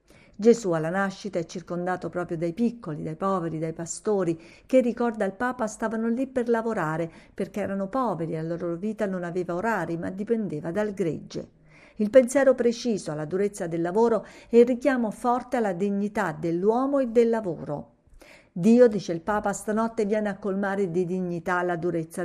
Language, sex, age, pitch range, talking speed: Italian, female, 50-69, 175-220 Hz, 170 wpm